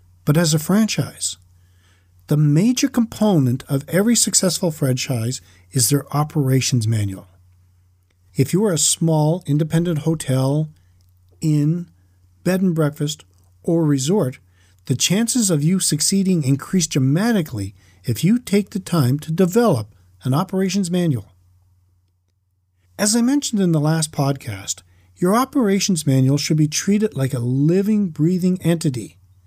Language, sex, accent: English, male, American